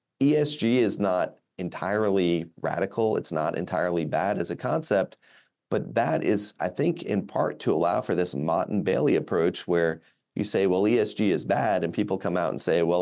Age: 30-49